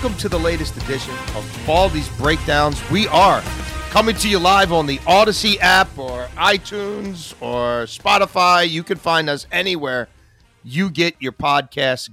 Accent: American